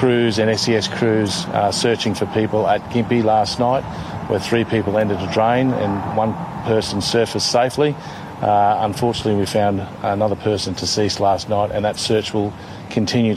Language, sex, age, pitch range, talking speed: Portuguese, male, 40-59, 100-120 Hz, 160 wpm